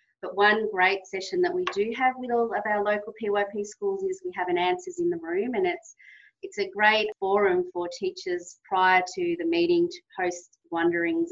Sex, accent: female, Australian